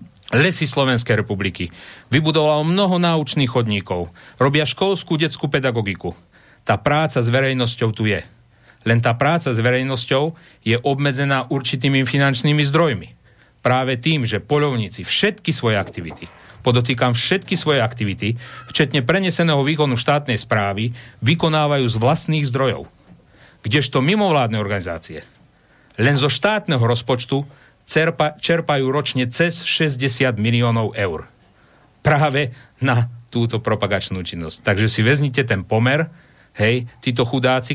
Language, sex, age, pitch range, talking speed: Slovak, male, 40-59, 110-140 Hz, 115 wpm